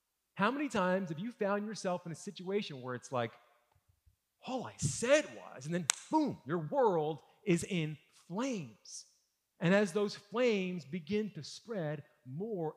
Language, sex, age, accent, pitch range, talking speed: English, male, 40-59, American, 150-205 Hz, 155 wpm